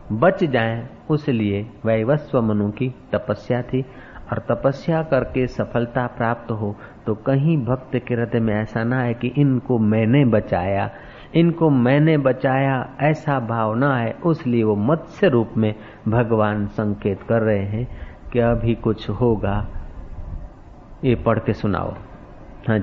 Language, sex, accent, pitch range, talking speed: Hindi, male, native, 100-120 Hz, 140 wpm